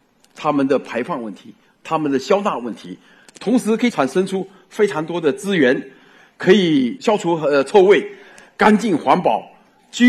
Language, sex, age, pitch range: Chinese, male, 50-69, 170-240 Hz